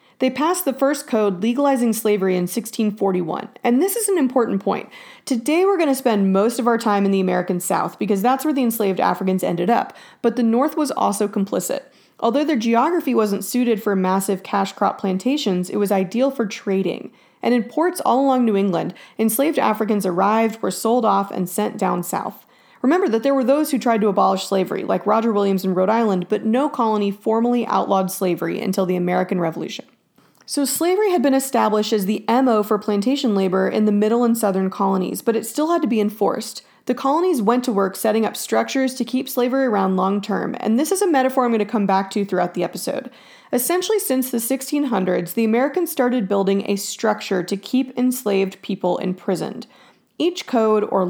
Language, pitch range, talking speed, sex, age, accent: English, 195-255 Hz, 200 wpm, female, 30-49, American